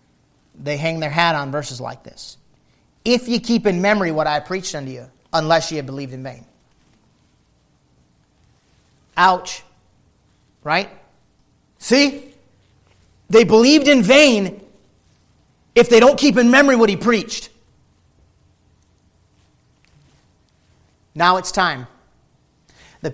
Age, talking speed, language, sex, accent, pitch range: 40-59, 115 wpm, English, male, American, 165-215 Hz